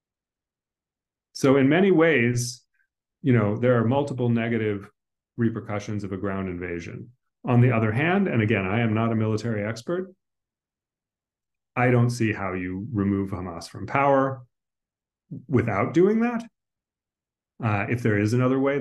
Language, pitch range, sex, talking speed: English, 100-120 Hz, male, 145 wpm